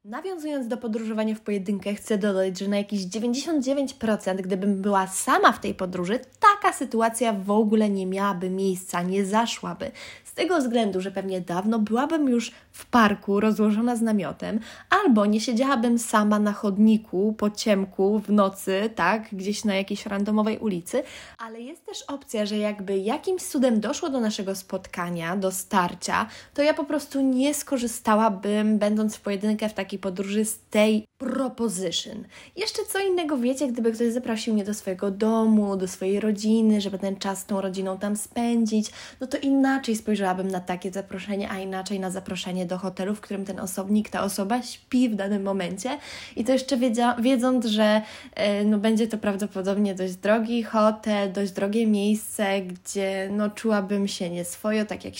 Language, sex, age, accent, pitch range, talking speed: Polish, female, 20-39, native, 195-235 Hz, 165 wpm